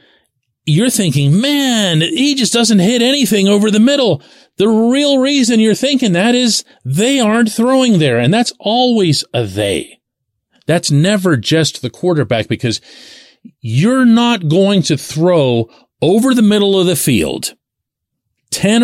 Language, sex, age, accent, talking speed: English, male, 40-59, American, 145 wpm